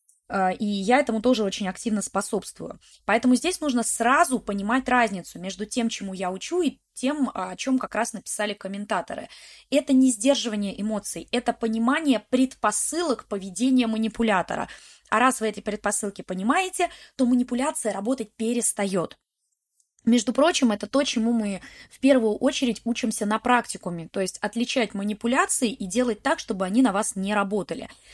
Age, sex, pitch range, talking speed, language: 20-39, female, 200-255 Hz, 150 wpm, Russian